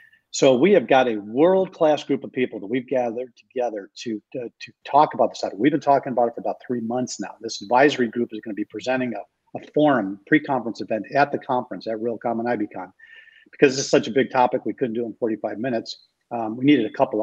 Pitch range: 115-140 Hz